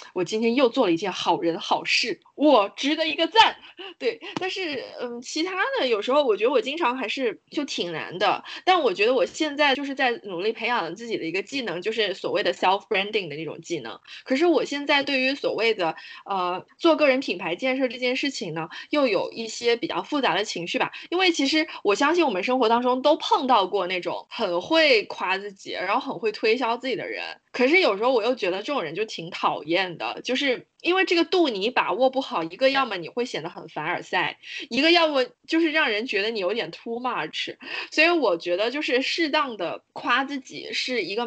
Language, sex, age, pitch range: Chinese, female, 20-39, 215-330 Hz